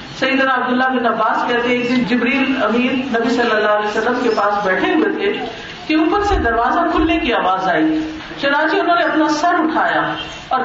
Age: 50-69